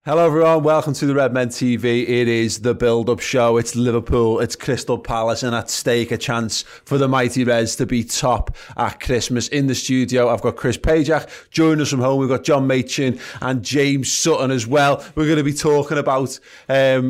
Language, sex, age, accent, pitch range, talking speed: English, male, 30-49, British, 115-140 Hz, 205 wpm